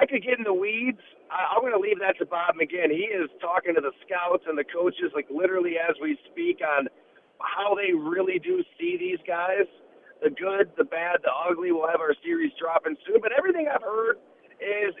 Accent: American